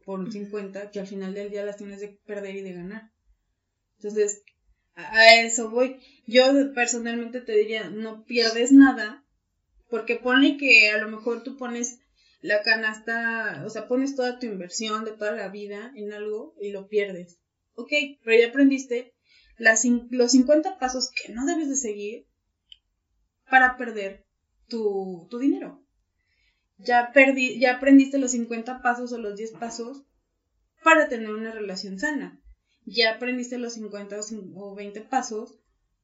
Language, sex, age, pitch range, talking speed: Spanish, female, 20-39, 205-250 Hz, 150 wpm